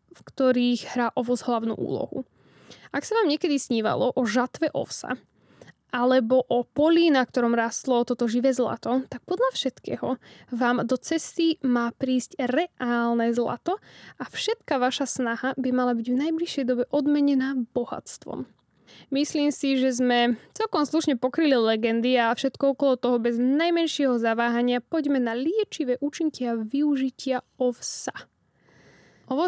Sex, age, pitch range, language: female, 10-29, 240-285 Hz, Slovak